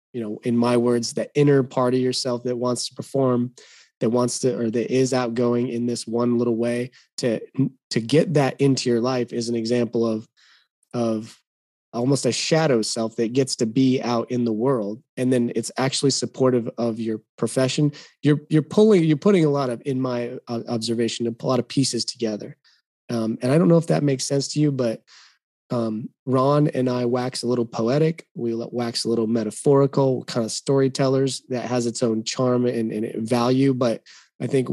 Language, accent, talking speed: English, American, 195 wpm